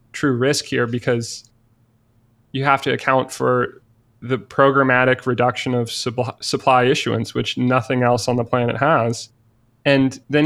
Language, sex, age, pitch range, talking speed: English, male, 20-39, 120-140 Hz, 145 wpm